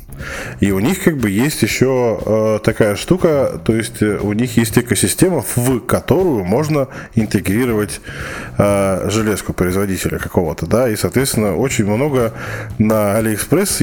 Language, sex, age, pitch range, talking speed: Russian, male, 20-39, 100-125 Hz, 135 wpm